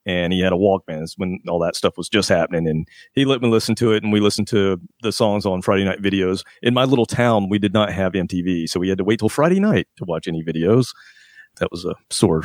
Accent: American